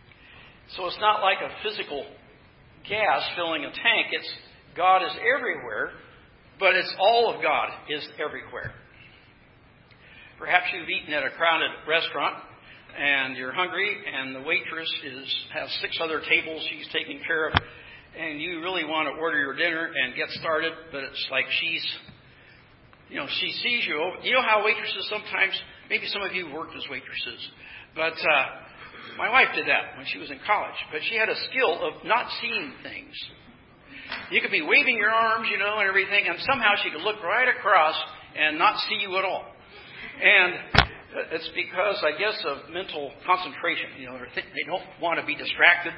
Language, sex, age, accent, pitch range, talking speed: English, male, 60-79, American, 155-205 Hz, 180 wpm